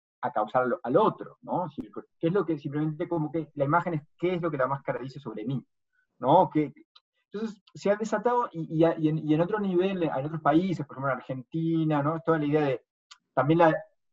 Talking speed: 210 wpm